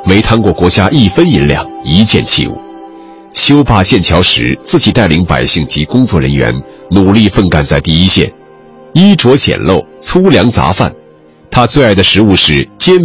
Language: Chinese